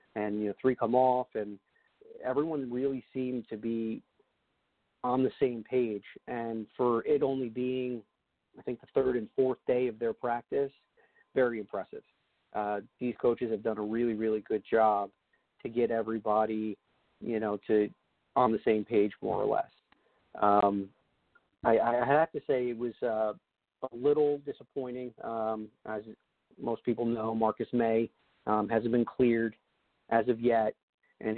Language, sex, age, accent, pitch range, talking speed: English, male, 40-59, American, 110-125 Hz, 160 wpm